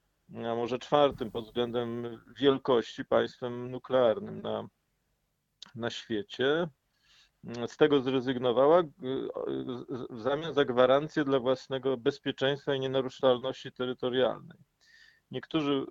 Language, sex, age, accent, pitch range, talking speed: Polish, male, 40-59, native, 125-155 Hz, 95 wpm